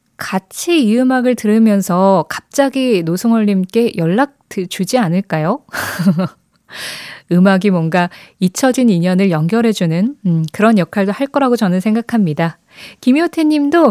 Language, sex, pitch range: Korean, female, 175-245 Hz